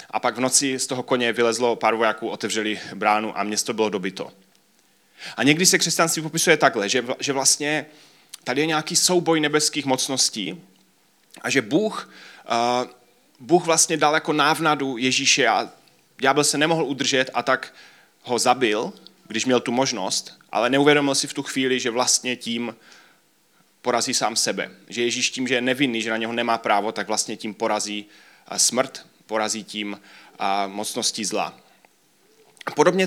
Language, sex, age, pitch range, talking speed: Czech, male, 30-49, 110-150 Hz, 155 wpm